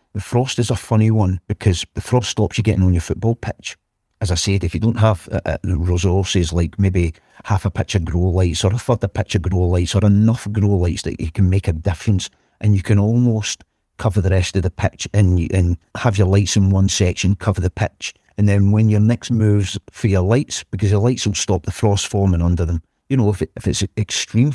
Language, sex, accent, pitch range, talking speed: English, male, British, 90-105 Hz, 240 wpm